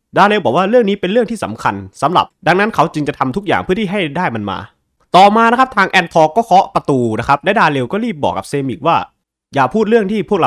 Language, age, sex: Thai, 20-39, male